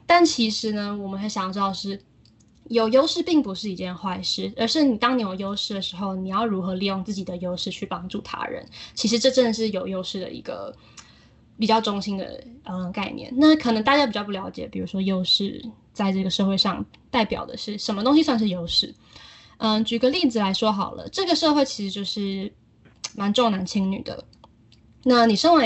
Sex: female